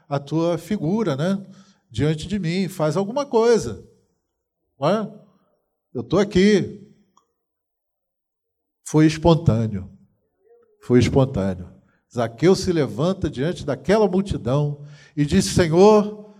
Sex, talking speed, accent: male, 100 wpm, Brazilian